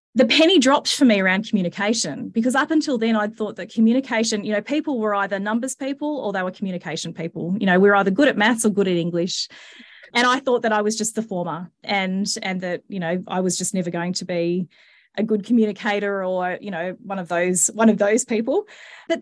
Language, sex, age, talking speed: English, female, 30-49, 230 wpm